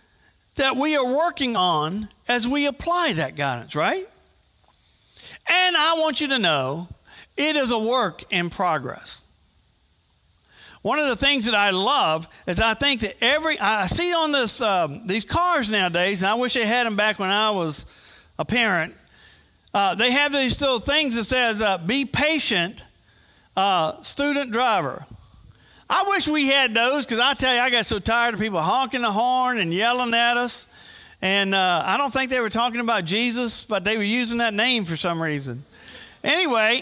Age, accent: 50-69, American